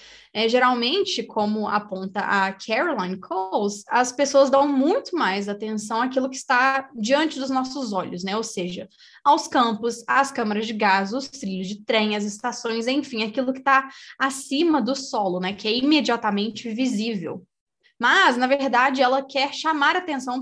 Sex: female